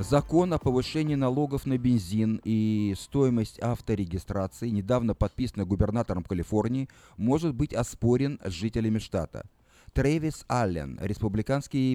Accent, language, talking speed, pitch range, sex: native, Russian, 110 wpm, 105-135 Hz, male